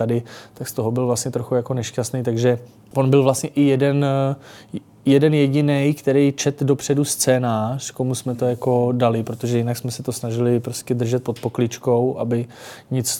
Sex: male